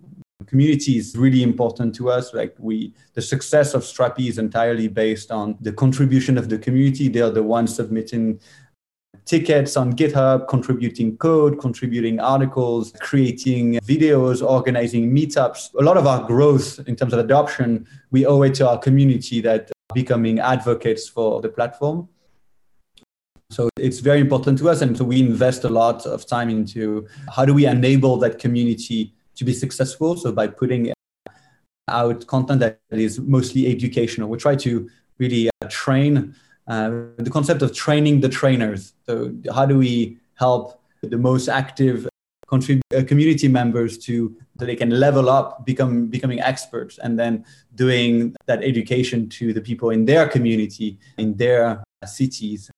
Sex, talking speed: male, 160 wpm